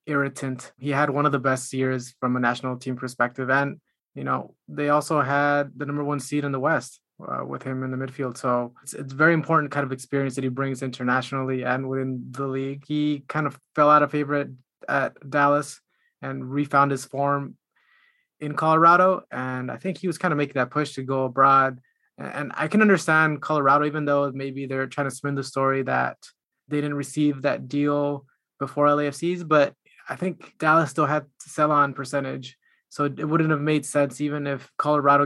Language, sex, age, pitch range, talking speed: English, male, 20-39, 135-150 Hz, 200 wpm